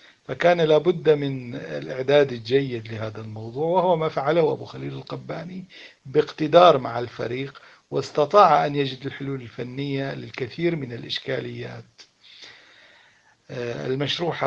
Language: Arabic